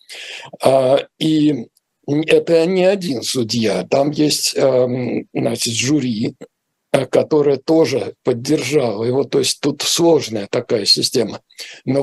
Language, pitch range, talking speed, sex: Russian, 130-160 Hz, 100 wpm, male